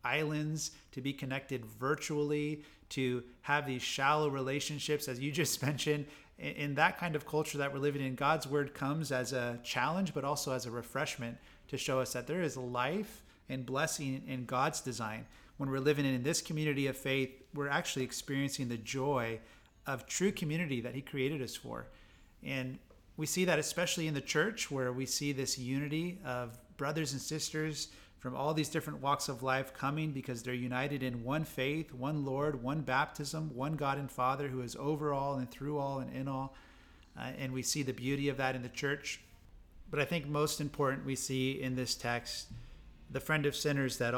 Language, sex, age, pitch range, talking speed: English, male, 30-49, 130-150 Hz, 195 wpm